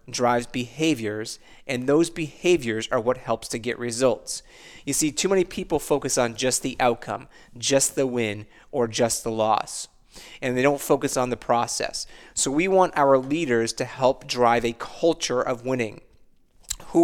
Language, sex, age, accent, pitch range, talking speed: English, male, 30-49, American, 120-155 Hz, 170 wpm